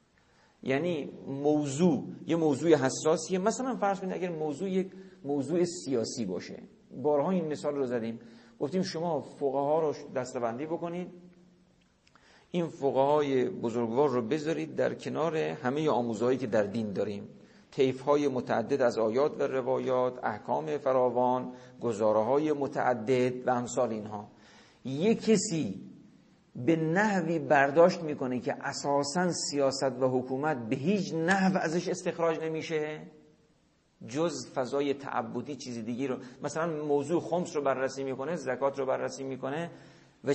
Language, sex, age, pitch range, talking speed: Persian, male, 50-69, 125-165 Hz, 135 wpm